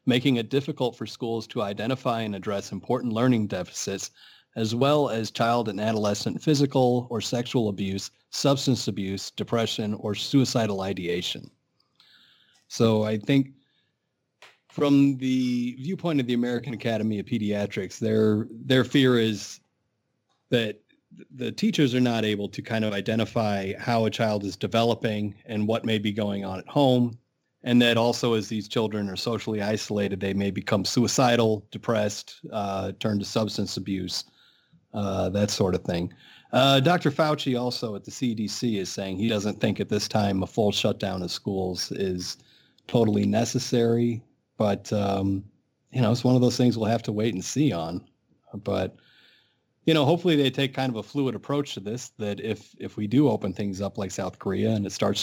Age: 40-59